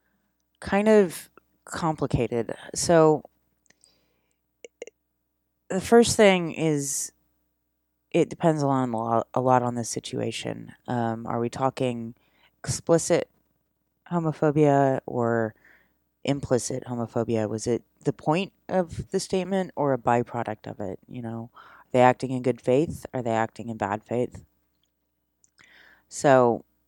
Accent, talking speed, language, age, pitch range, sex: American, 115 wpm, English, 30-49, 110-135 Hz, female